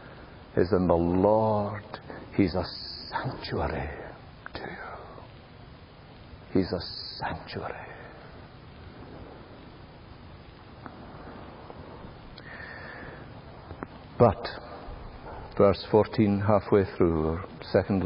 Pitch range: 100-120 Hz